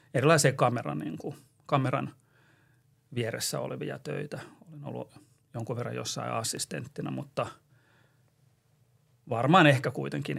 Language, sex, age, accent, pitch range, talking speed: Finnish, male, 40-59, native, 125-150 Hz, 100 wpm